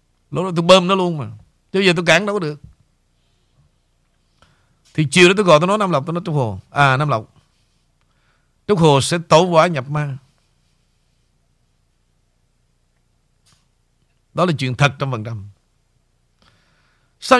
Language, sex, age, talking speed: Vietnamese, male, 60-79, 160 wpm